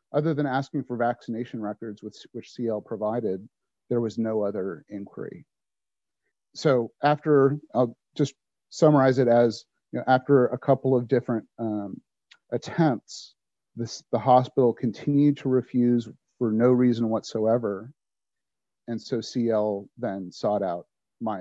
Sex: male